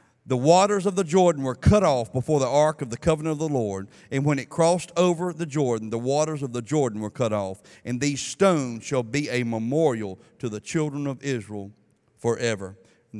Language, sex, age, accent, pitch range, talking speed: English, male, 40-59, American, 115-155 Hz, 210 wpm